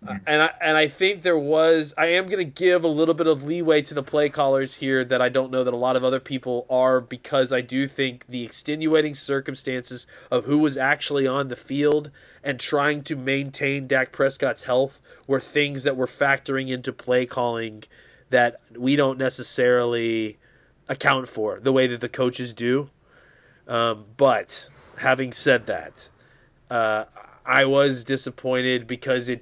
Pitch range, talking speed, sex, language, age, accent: 120-135 Hz, 170 wpm, male, English, 30-49, American